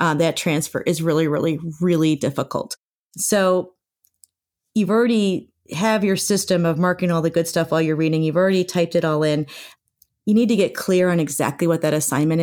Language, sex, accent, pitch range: English, female, American, 160-200 Hz